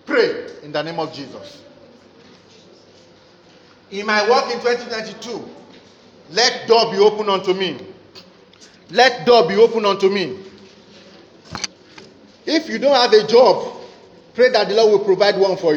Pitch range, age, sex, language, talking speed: 195-235 Hz, 40-59, male, English, 140 wpm